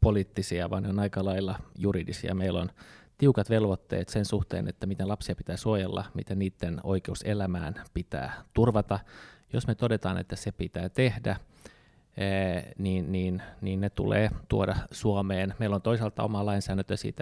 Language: Finnish